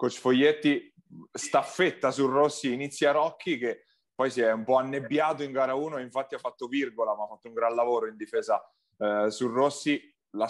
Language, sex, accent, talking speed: Italian, male, native, 190 wpm